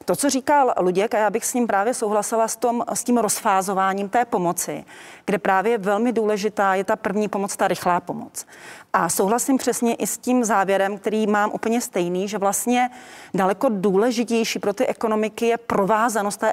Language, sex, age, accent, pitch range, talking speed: Czech, female, 40-59, native, 195-225 Hz, 180 wpm